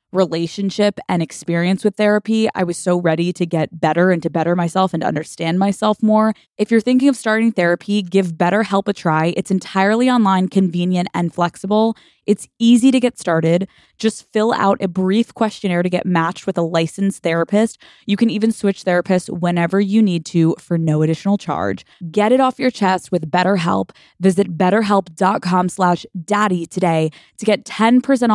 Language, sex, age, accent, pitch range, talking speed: English, female, 20-39, American, 180-225 Hz, 175 wpm